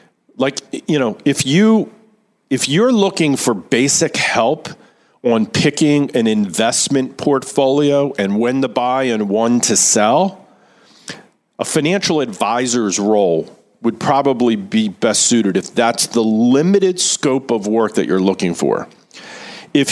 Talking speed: 135 wpm